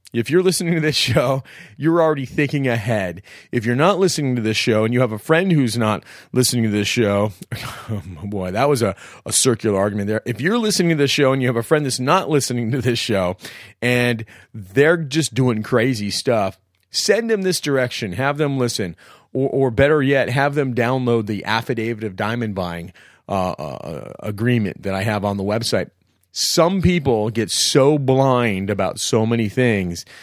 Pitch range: 105-135 Hz